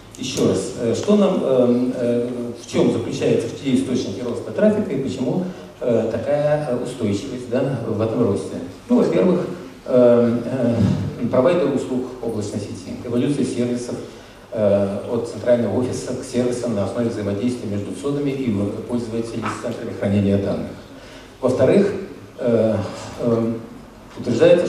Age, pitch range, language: 50-69, 115-135 Hz, Russian